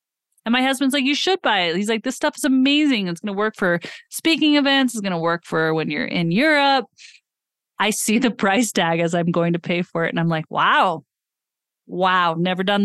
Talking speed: 230 wpm